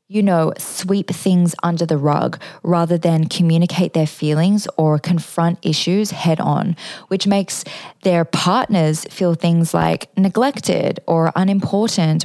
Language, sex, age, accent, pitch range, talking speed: English, female, 20-39, Australian, 160-190 Hz, 130 wpm